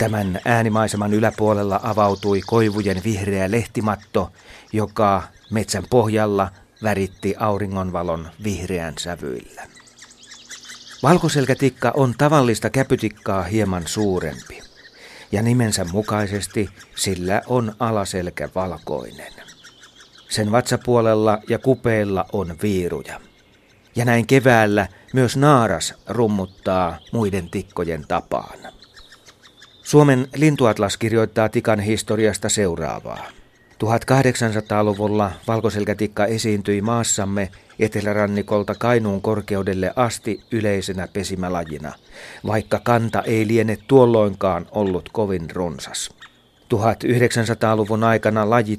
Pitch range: 100-115 Hz